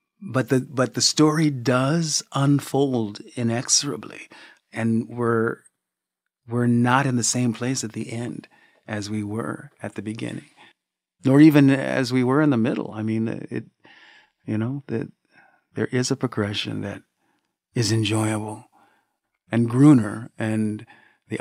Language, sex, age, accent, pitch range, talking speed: English, male, 40-59, American, 105-125 Hz, 140 wpm